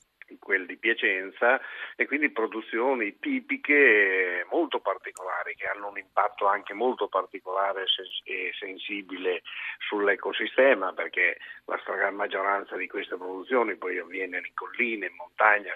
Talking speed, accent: 130 wpm, native